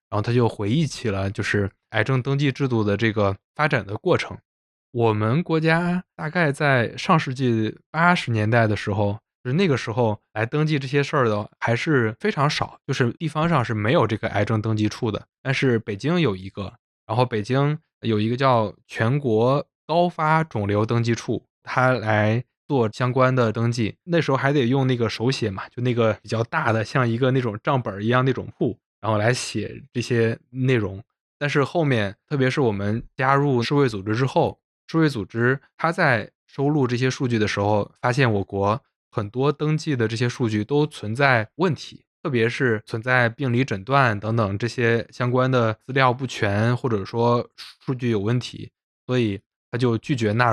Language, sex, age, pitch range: Chinese, male, 20-39, 110-135 Hz